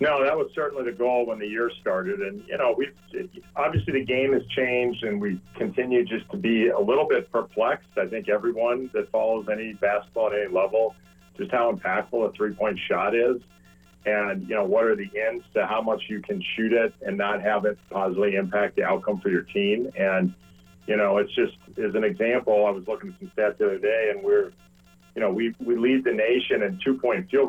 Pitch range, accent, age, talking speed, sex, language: 100-130 Hz, American, 50-69, 220 wpm, male, English